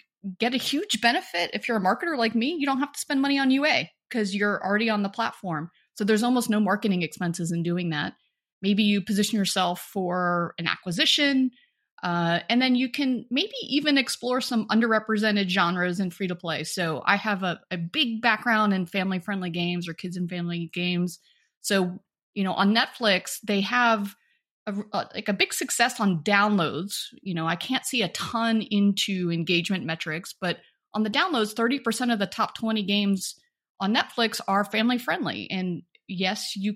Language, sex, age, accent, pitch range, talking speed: English, female, 30-49, American, 185-240 Hz, 180 wpm